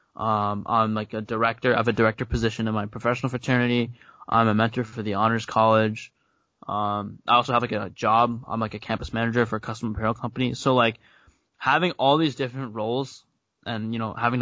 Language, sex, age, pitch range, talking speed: English, male, 10-29, 110-130 Hz, 200 wpm